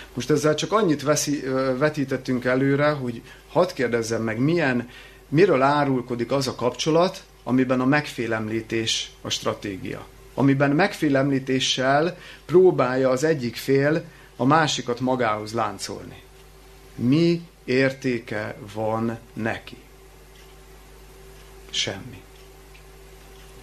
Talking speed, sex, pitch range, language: 95 wpm, male, 115-145 Hz, Hungarian